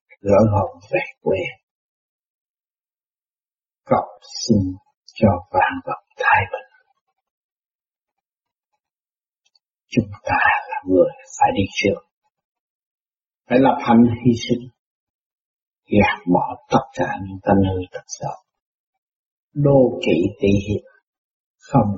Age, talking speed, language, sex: 60-79, 100 wpm, Vietnamese, male